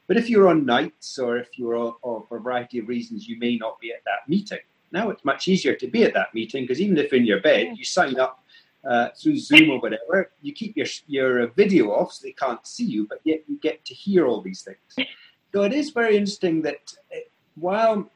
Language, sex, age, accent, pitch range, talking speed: English, male, 40-59, British, 125-185 Hz, 240 wpm